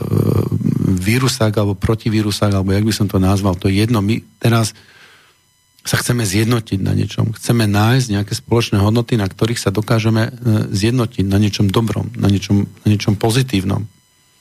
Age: 50-69